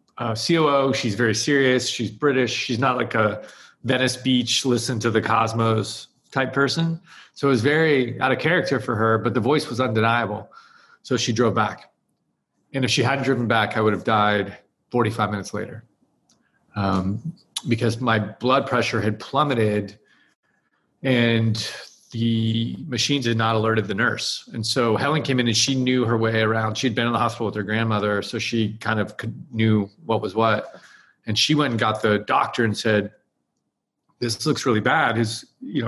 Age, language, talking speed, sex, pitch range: 30-49, English, 180 wpm, male, 110-130 Hz